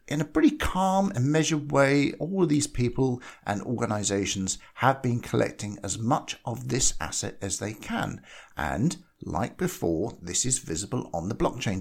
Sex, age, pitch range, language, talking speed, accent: male, 50-69, 95-145 Hz, English, 170 wpm, British